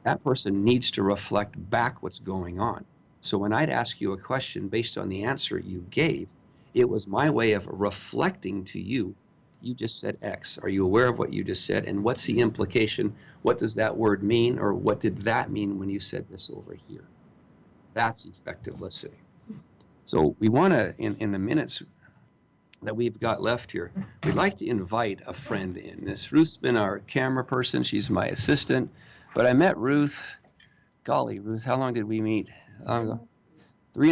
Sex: male